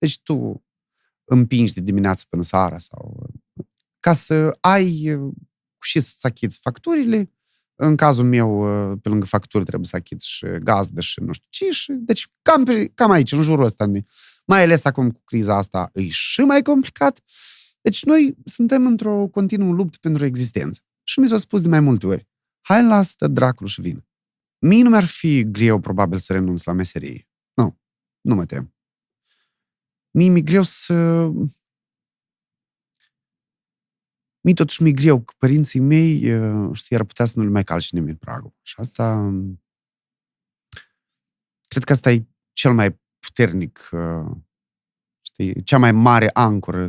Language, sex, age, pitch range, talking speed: Romanian, male, 30-49, 100-165 Hz, 150 wpm